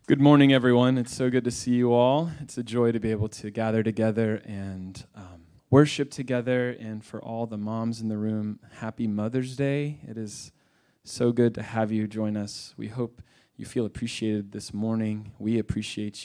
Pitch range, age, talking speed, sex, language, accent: 110-140 Hz, 20-39, 190 wpm, male, English, American